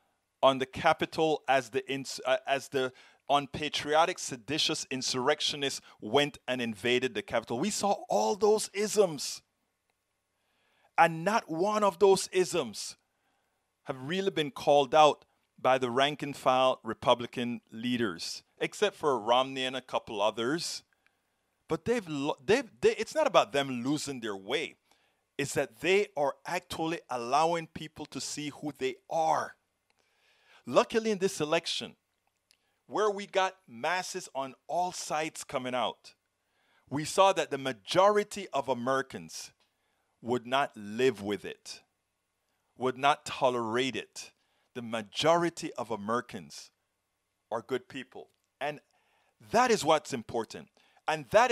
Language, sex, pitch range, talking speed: English, male, 125-175 Hz, 130 wpm